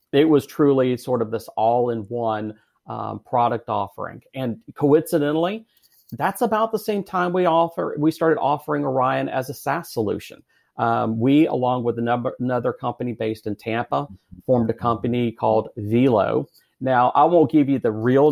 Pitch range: 115-135 Hz